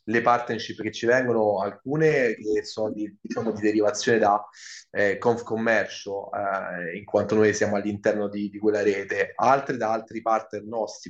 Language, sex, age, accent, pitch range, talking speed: Italian, male, 30-49, native, 110-125 Hz, 160 wpm